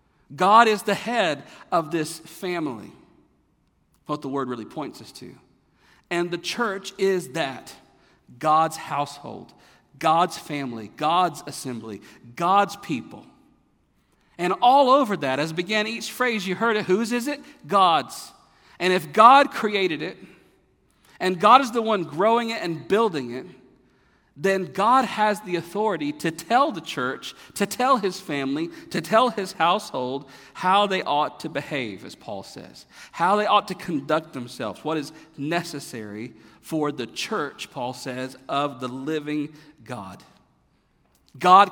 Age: 50-69